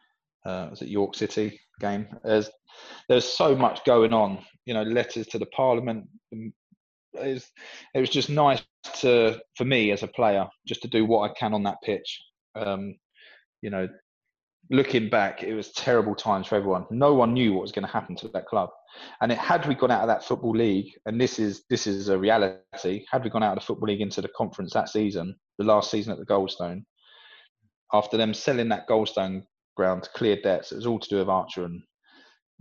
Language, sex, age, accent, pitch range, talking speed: English, male, 20-39, British, 95-115 Hz, 210 wpm